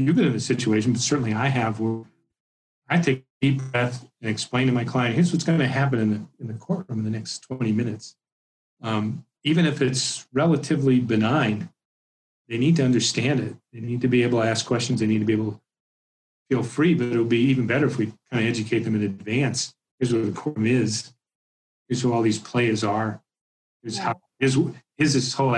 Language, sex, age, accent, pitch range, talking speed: English, male, 40-59, American, 110-135 Hz, 220 wpm